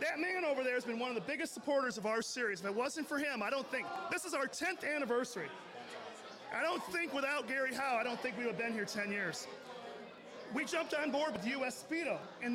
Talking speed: 245 wpm